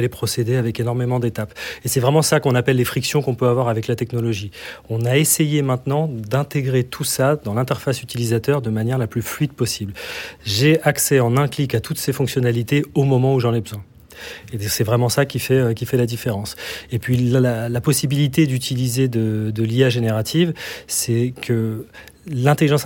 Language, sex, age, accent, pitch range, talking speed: French, male, 30-49, French, 120-140 Hz, 185 wpm